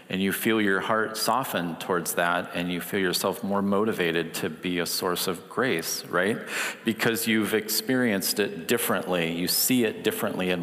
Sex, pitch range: male, 95-115 Hz